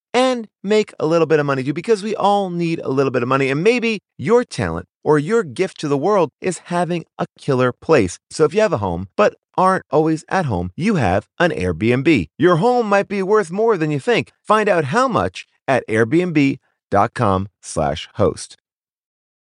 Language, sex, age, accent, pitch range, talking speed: English, male, 30-49, American, 125-205 Hz, 195 wpm